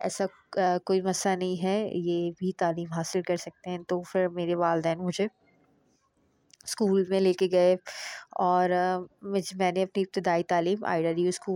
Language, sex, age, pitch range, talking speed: Urdu, female, 20-39, 180-200 Hz, 155 wpm